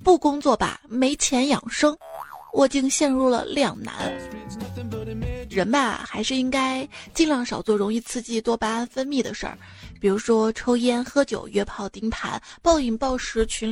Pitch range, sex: 235-305 Hz, female